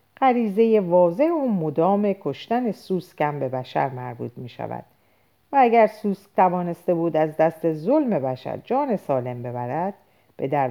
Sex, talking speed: female, 140 wpm